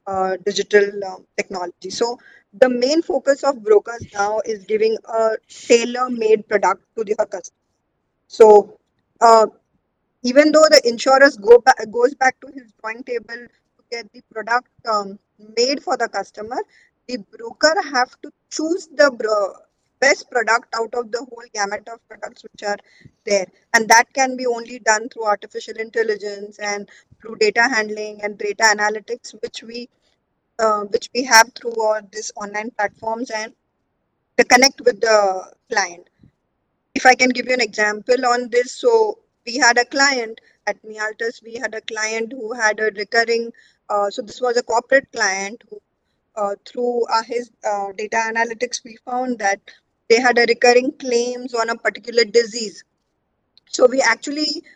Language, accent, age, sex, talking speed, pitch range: English, Indian, 20-39, female, 160 wpm, 215-250 Hz